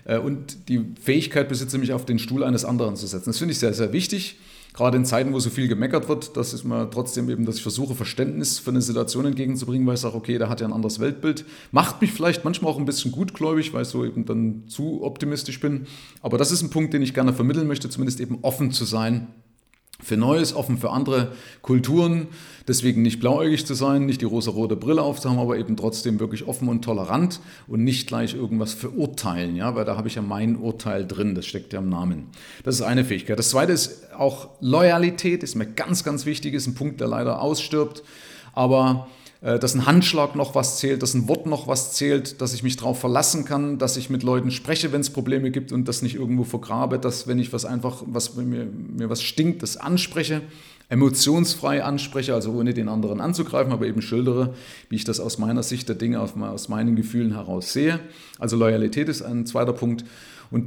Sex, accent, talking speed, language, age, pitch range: male, German, 215 wpm, German, 40-59, 115-145 Hz